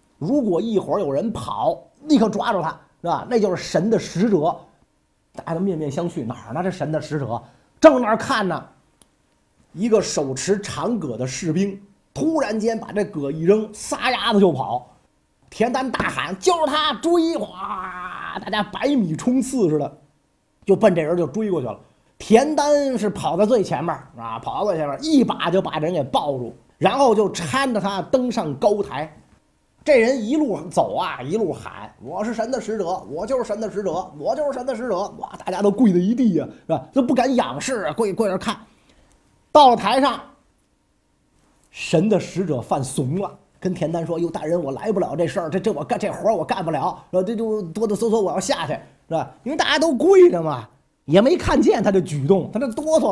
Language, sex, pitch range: Chinese, male, 175-250 Hz